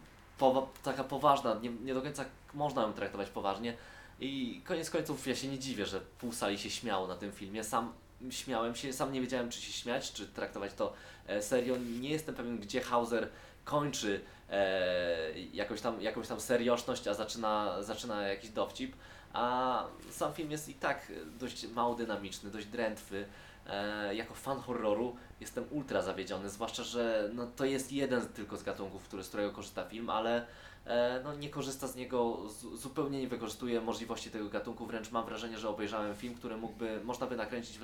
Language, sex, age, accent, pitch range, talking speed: Polish, male, 20-39, native, 105-130 Hz, 175 wpm